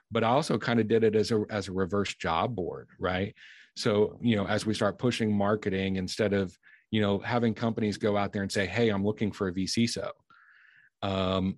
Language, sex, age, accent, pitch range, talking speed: English, male, 40-59, American, 95-105 Hz, 220 wpm